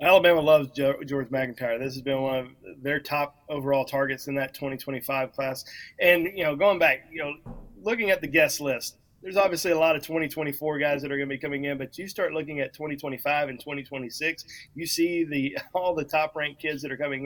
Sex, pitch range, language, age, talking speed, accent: male, 140-165 Hz, English, 30-49, 215 wpm, American